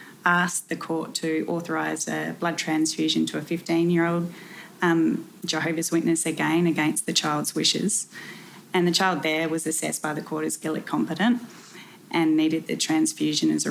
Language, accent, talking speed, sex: English, Australian, 160 wpm, female